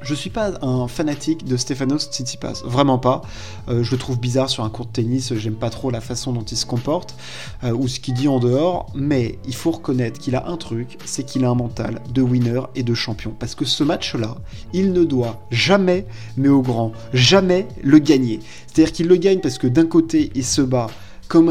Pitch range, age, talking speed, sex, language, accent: 120-150 Hz, 20-39, 225 wpm, male, French, French